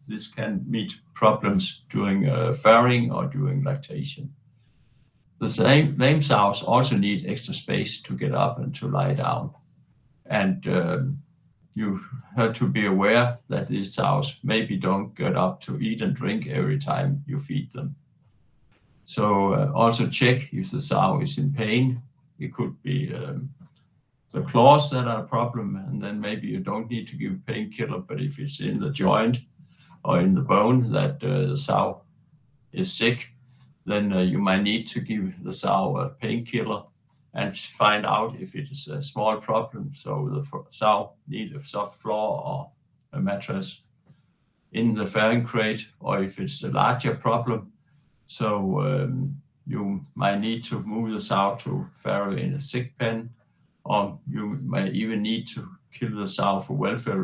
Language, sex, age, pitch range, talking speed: Danish, male, 60-79, 115-150 Hz, 170 wpm